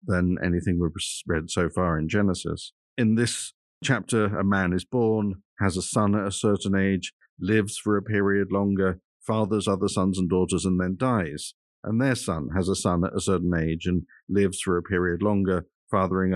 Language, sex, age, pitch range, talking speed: English, male, 50-69, 90-110 Hz, 190 wpm